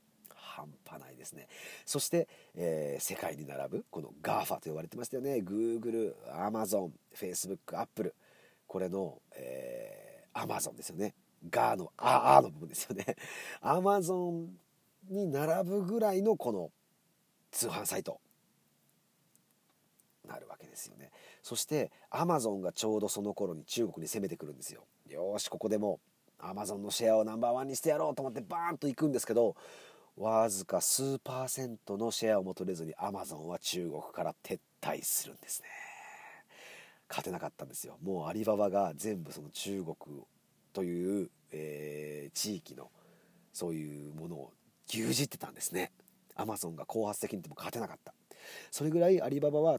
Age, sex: 40-59, male